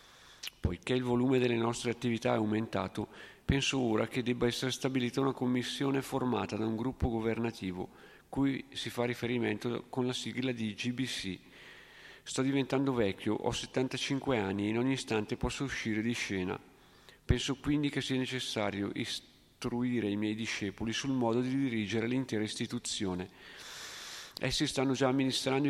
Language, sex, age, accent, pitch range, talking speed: Italian, male, 40-59, native, 110-130 Hz, 145 wpm